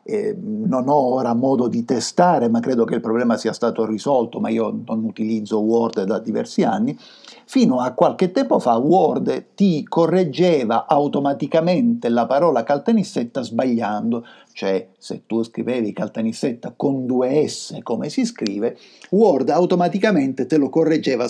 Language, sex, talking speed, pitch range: Italian, male, 145 wpm, 115-185 Hz